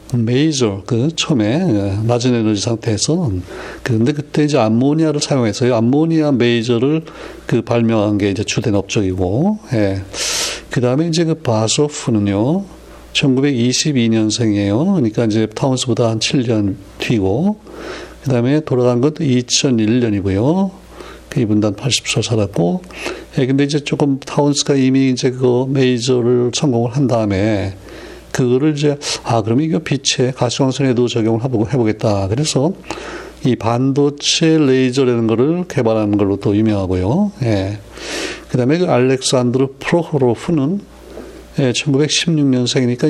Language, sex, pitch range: Korean, male, 110-145 Hz